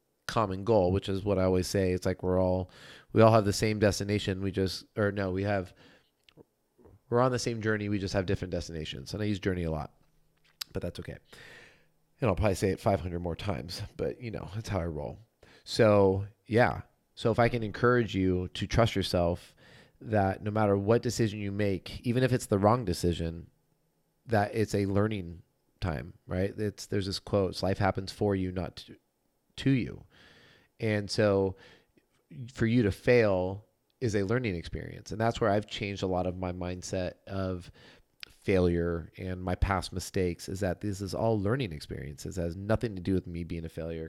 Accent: American